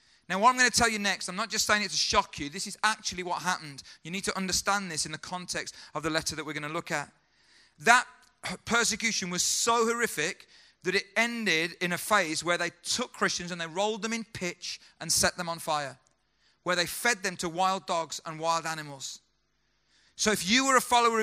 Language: English